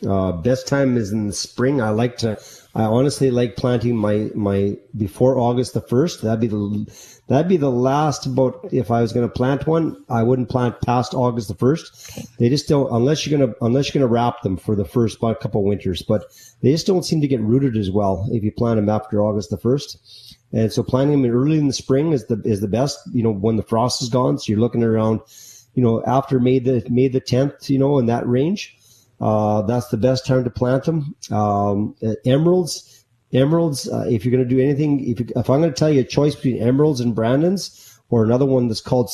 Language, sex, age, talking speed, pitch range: English, male, 30-49, 240 wpm, 110-130 Hz